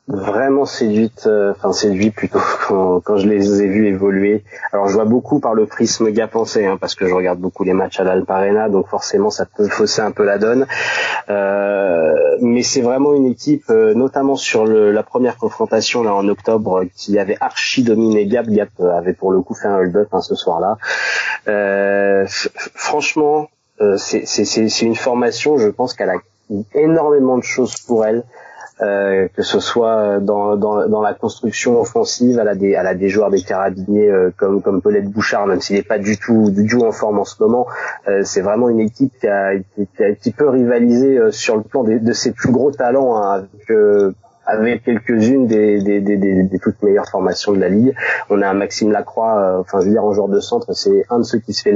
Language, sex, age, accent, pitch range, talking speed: French, male, 30-49, French, 100-125 Hz, 220 wpm